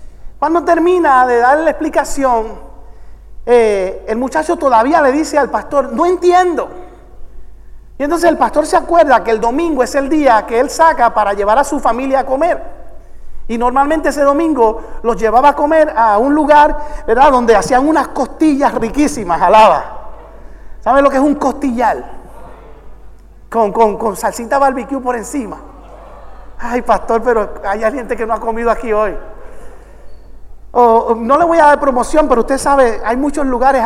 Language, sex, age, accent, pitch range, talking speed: English, male, 40-59, Venezuelan, 230-310 Hz, 165 wpm